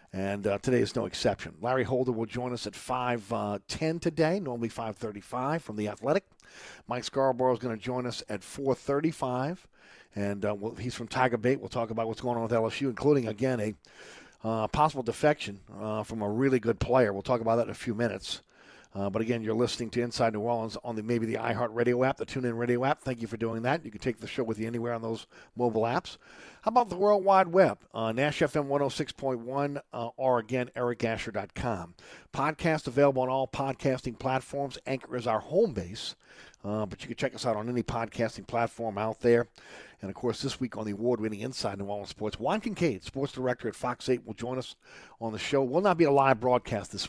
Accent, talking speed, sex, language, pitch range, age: American, 215 wpm, male, English, 110-130 Hz, 50-69